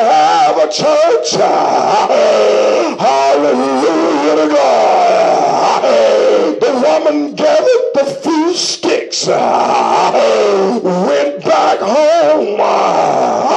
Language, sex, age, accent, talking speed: English, male, 50-69, American, 60 wpm